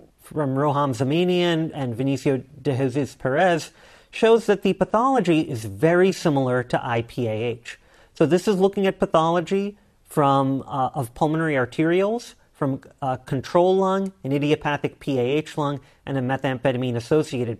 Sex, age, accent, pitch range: male, 40-59, American, 125-165 Hz